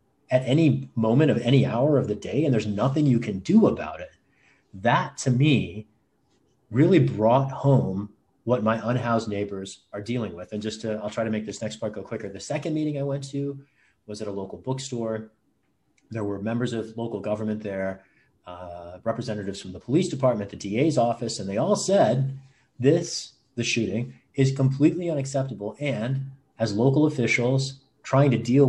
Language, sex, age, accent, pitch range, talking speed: English, male, 30-49, American, 110-140 Hz, 180 wpm